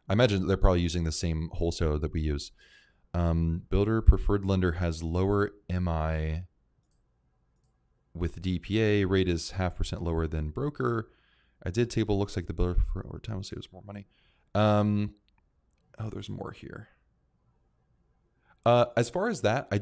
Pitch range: 85-105 Hz